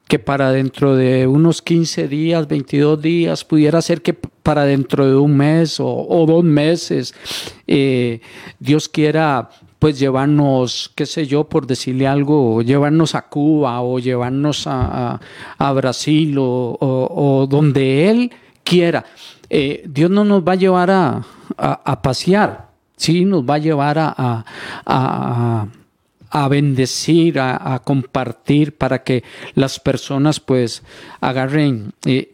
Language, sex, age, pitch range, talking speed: Spanish, male, 50-69, 130-165 Hz, 145 wpm